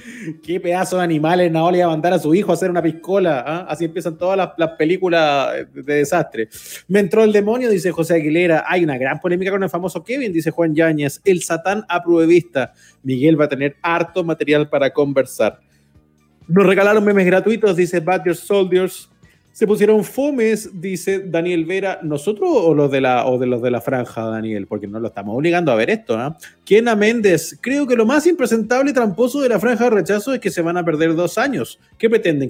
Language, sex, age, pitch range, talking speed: Spanish, male, 30-49, 140-195 Hz, 205 wpm